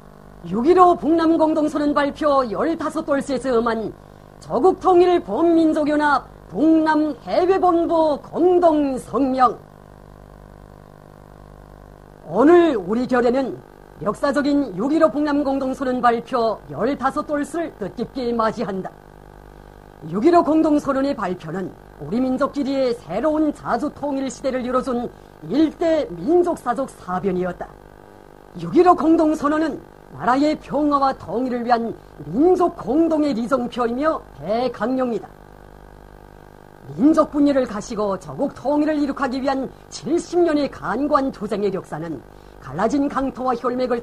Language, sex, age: Korean, female, 40-59